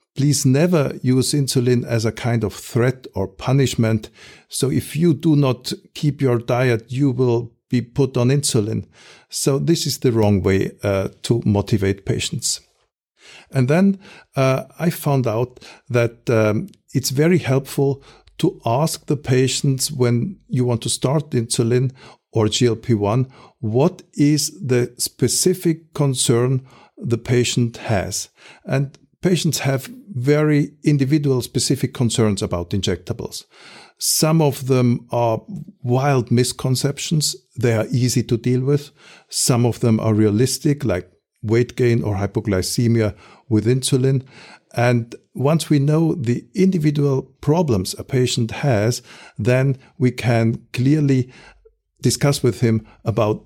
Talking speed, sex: 130 wpm, male